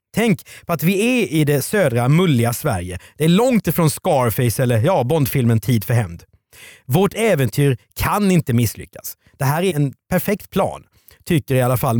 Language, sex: Swedish, male